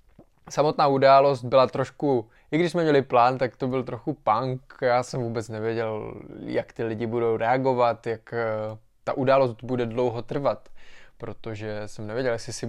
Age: 20-39